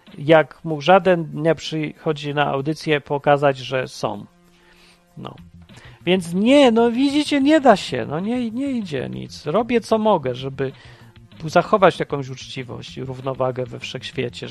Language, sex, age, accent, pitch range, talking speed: Polish, male, 40-59, native, 115-180 Hz, 140 wpm